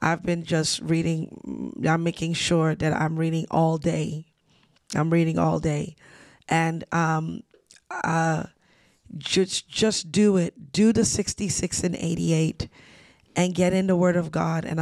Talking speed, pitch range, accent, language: 145 wpm, 170-190 Hz, American, English